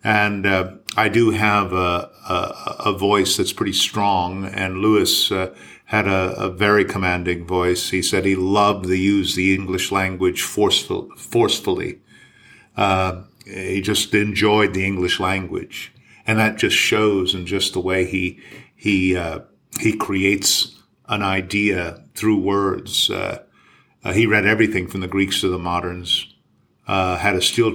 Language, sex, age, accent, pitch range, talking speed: English, male, 50-69, American, 95-105 Hz, 155 wpm